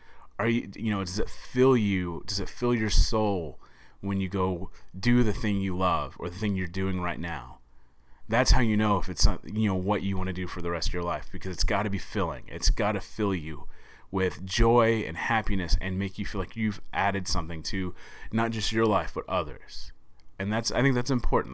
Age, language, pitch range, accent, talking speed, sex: 30-49, English, 95-115 Hz, American, 235 wpm, male